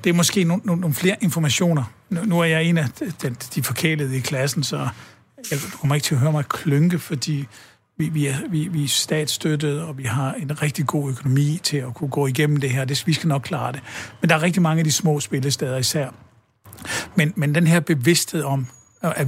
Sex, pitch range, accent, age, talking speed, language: male, 135-160 Hz, native, 60-79, 225 wpm, Danish